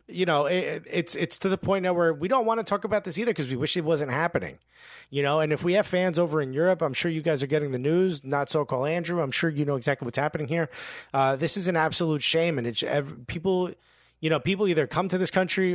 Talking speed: 265 wpm